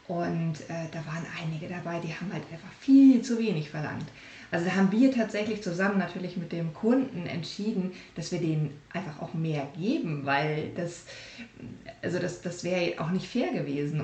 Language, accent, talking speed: German, German, 180 wpm